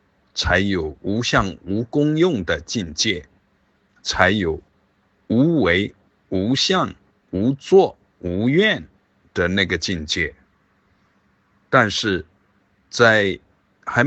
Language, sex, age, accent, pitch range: Chinese, male, 50-69, native, 95-155 Hz